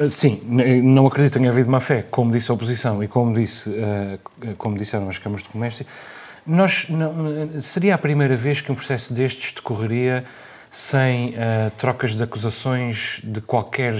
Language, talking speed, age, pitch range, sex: Portuguese, 165 wpm, 30-49, 115-155 Hz, male